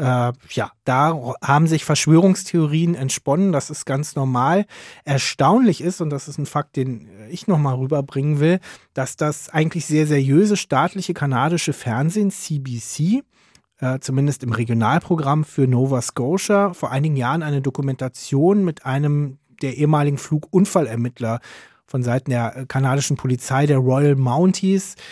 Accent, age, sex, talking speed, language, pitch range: German, 30-49, male, 130 wpm, German, 130-165 Hz